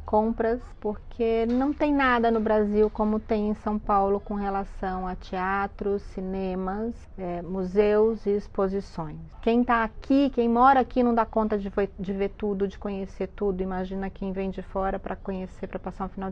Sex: female